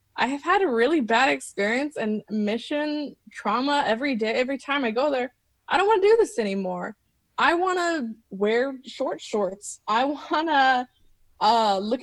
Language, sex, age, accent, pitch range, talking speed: English, female, 20-39, American, 185-240 Hz, 175 wpm